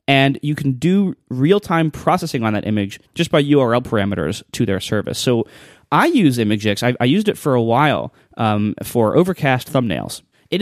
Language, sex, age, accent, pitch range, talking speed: English, male, 20-39, American, 115-145 Hz, 180 wpm